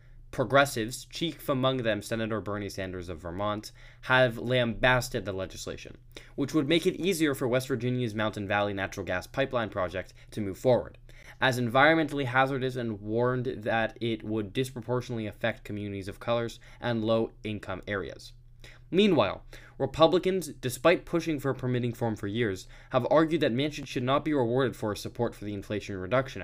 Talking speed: 160 wpm